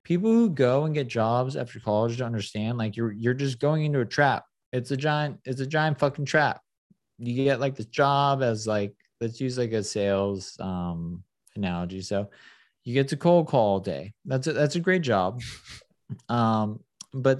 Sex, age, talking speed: male, 20-39, 195 wpm